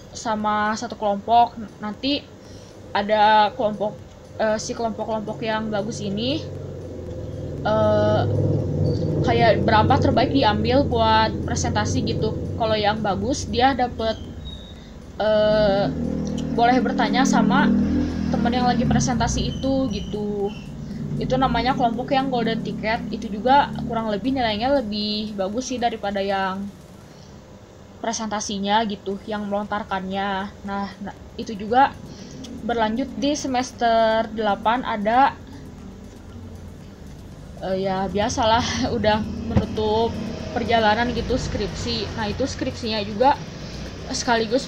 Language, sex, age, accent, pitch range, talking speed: Indonesian, female, 20-39, native, 200-235 Hz, 105 wpm